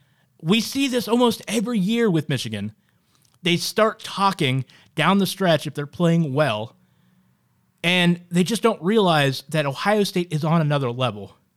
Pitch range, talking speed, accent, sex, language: 135-180 Hz, 155 wpm, American, male, English